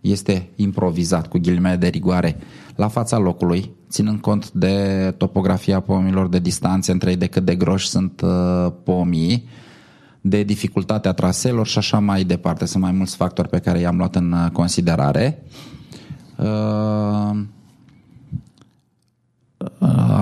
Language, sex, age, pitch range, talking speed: Romanian, male, 20-39, 95-115 Hz, 130 wpm